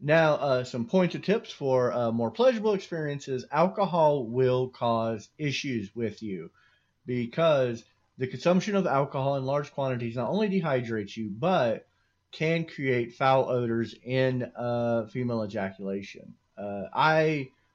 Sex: male